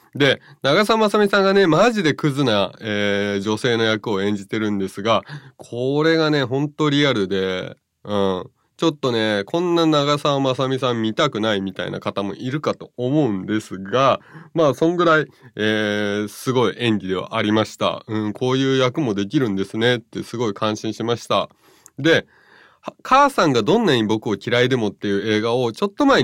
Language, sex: Japanese, male